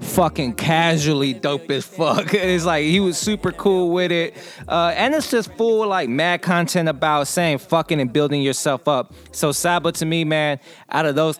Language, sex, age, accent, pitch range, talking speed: English, male, 20-39, American, 135-160 Hz, 190 wpm